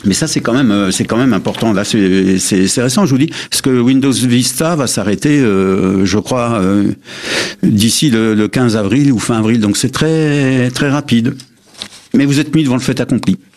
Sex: male